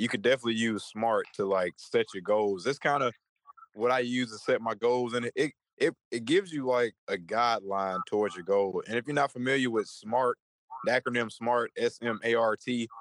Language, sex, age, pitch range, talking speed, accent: English, male, 20-39, 110-130 Hz, 205 wpm, American